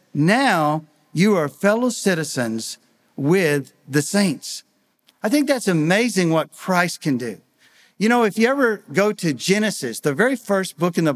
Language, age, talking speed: English, 50-69, 160 wpm